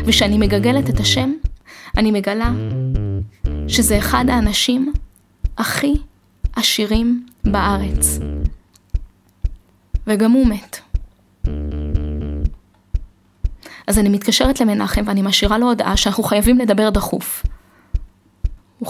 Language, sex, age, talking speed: Hebrew, female, 20-39, 90 wpm